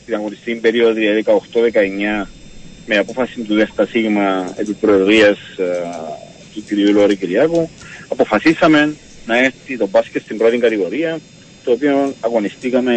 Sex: male